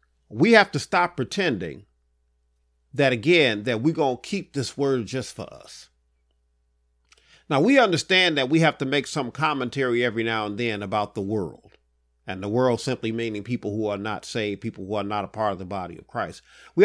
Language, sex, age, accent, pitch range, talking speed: English, male, 40-59, American, 100-150 Hz, 200 wpm